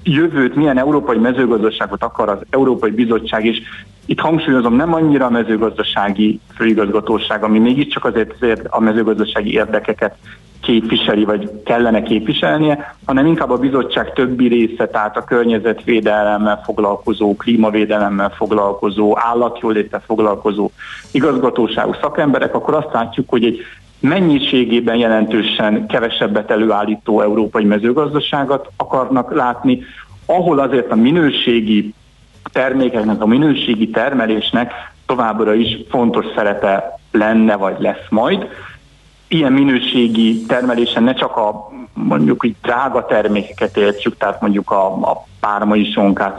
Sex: male